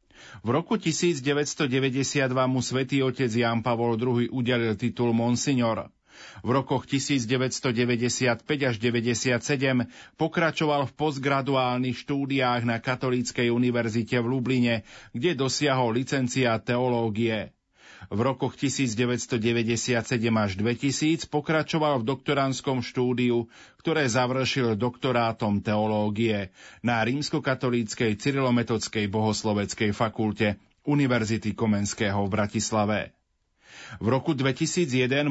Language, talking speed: Slovak, 95 wpm